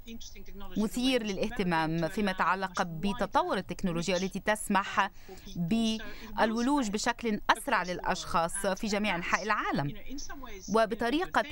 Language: Arabic